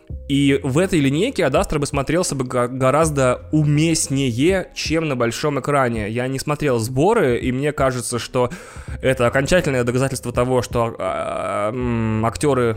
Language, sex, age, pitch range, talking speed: Russian, male, 20-39, 120-140 Hz, 130 wpm